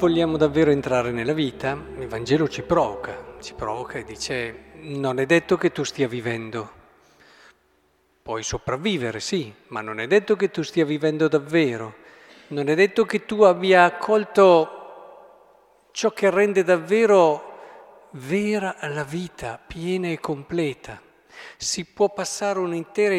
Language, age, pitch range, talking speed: Italian, 50-69, 120-170 Hz, 135 wpm